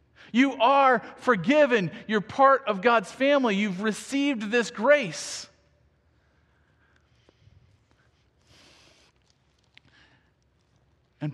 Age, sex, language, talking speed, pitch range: 40-59, male, English, 70 wpm, 120-195 Hz